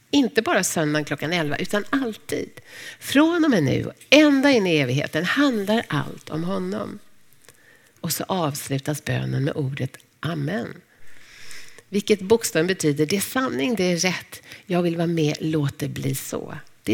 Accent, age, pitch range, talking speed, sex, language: native, 60-79, 150-210 Hz, 155 wpm, female, Swedish